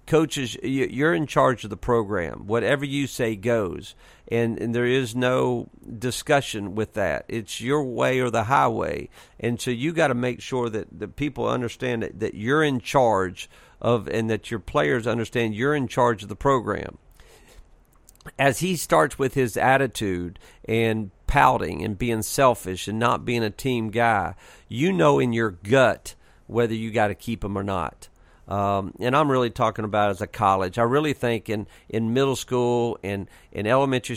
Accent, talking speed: American, 180 wpm